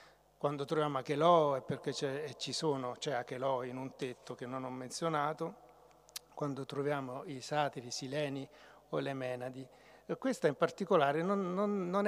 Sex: male